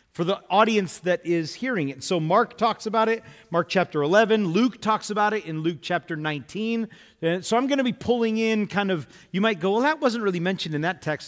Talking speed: 230 wpm